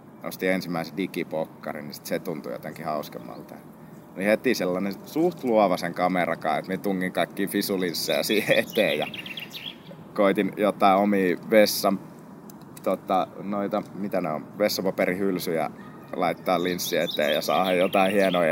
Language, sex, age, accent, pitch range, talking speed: Finnish, male, 30-49, native, 90-115 Hz, 125 wpm